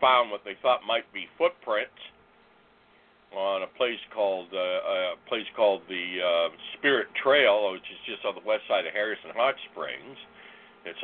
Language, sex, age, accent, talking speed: English, male, 60-79, American, 170 wpm